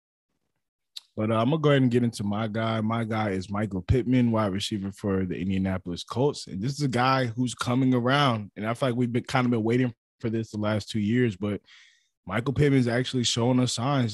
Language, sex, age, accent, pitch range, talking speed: English, male, 20-39, American, 100-120 Hz, 235 wpm